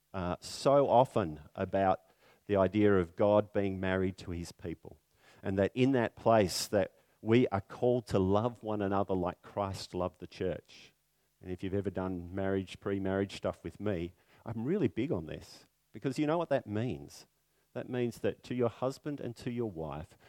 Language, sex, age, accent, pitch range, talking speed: English, male, 50-69, Australian, 95-120 Hz, 185 wpm